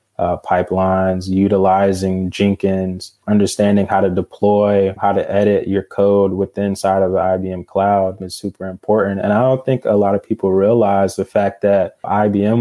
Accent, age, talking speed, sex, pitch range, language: American, 20-39, 165 wpm, male, 95-105 Hz, English